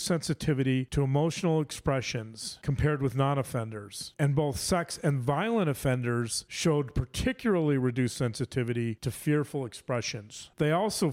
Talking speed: 120 wpm